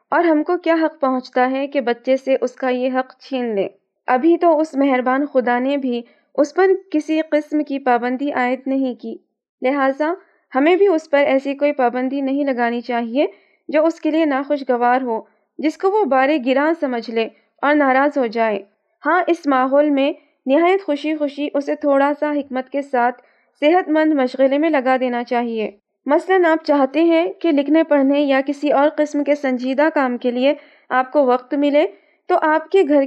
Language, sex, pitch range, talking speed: Urdu, female, 255-310 Hz, 190 wpm